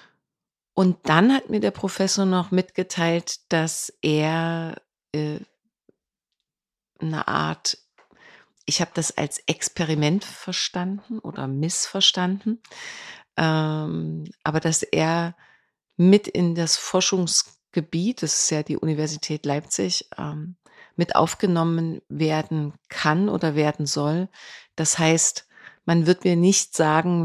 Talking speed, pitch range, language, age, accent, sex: 110 wpm, 155-180 Hz, German, 40-59, German, female